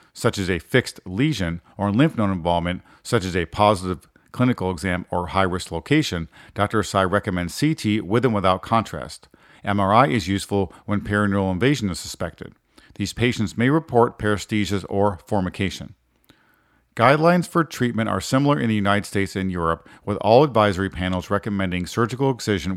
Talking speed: 155 wpm